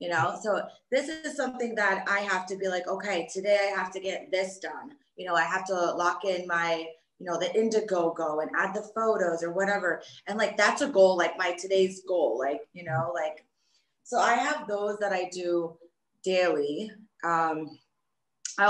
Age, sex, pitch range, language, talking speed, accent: 20-39, female, 180-220 Hz, English, 195 wpm, American